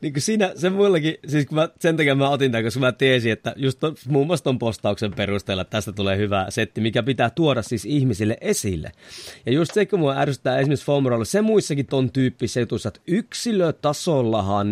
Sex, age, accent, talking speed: male, 30-49, native, 195 wpm